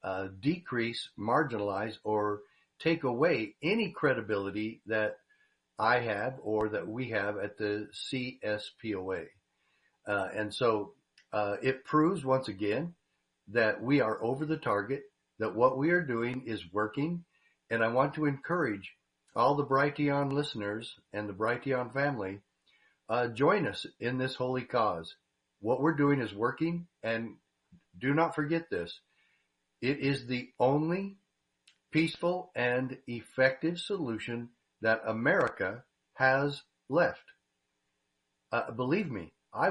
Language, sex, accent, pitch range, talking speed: English, male, American, 105-145 Hz, 130 wpm